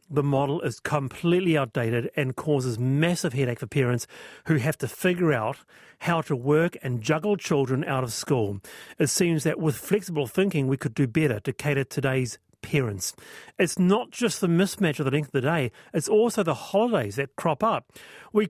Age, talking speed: 40-59, 190 wpm